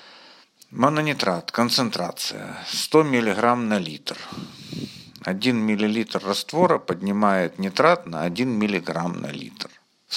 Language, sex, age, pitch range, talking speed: Russian, male, 50-69, 95-135 Hz, 100 wpm